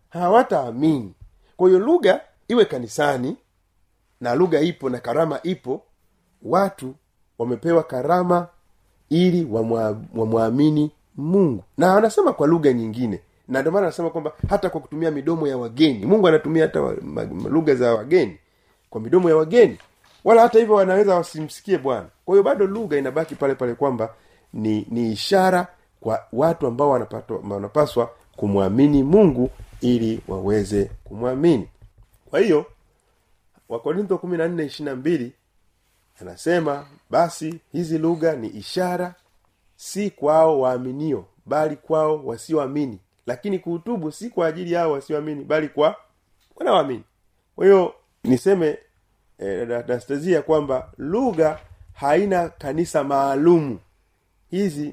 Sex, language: male, Swahili